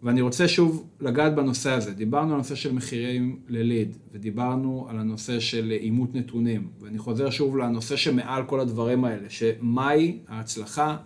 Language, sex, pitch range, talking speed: Hebrew, male, 120-165 Hz, 150 wpm